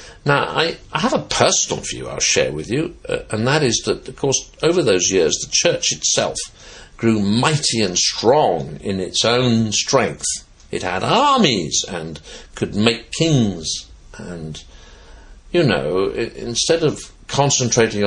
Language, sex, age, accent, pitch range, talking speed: English, male, 60-79, British, 100-165 Hz, 150 wpm